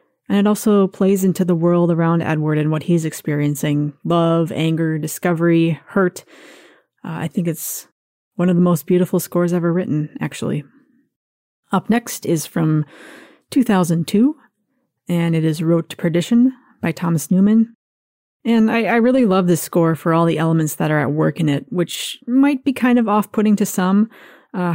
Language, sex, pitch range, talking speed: English, female, 165-205 Hz, 170 wpm